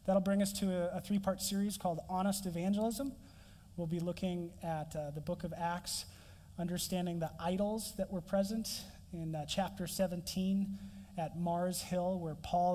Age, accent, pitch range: 30-49, American, 155-190 Hz